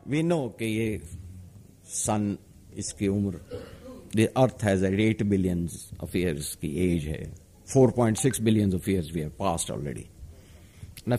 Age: 50-69